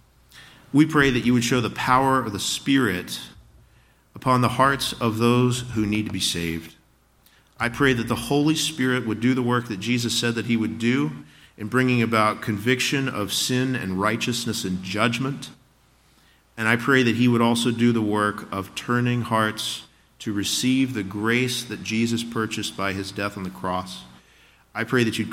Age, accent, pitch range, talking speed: 40-59, American, 100-120 Hz, 185 wpm